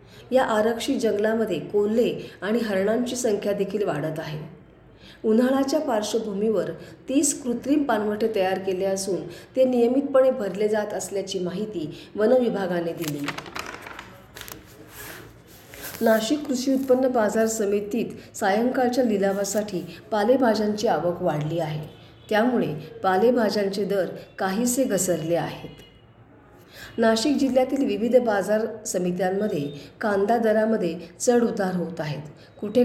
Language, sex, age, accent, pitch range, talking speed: Marathi, female, 40-59, native, 185-240 Hz, 100 wpm